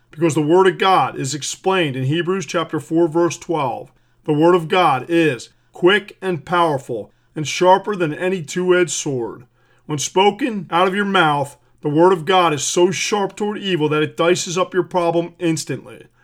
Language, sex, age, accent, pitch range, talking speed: English, male, 40-59, American, 155-185 Hz, 180 wpm